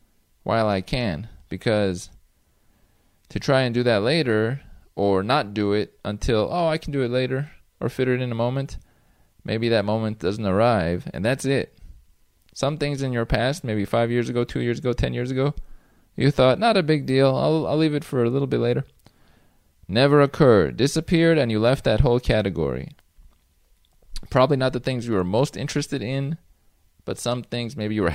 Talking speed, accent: 190 wpm, American